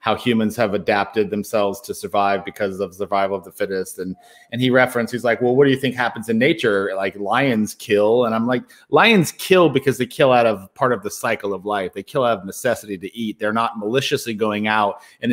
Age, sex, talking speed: 30-49, male, 235 wpm